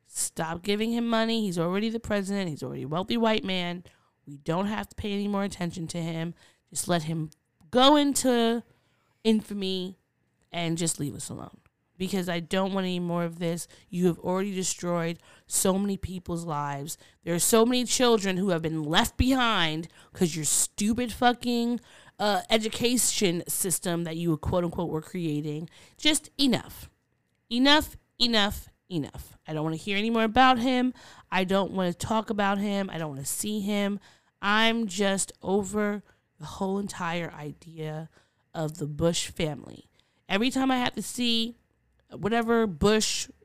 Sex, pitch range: female, 165-220 Hz